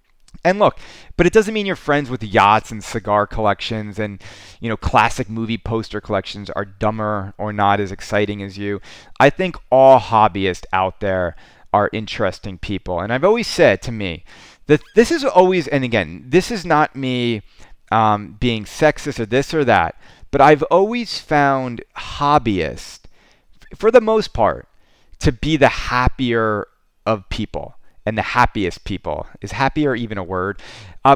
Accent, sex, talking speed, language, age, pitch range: American, male, 165 wpm, English, 30-49, 105-140 Hz